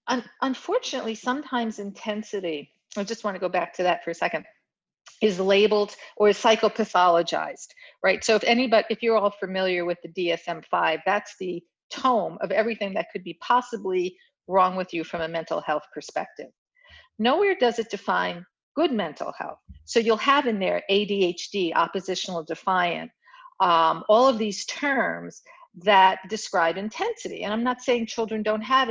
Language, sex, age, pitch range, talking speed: English, female, 50-69, 190-250 Hz, 160 wpm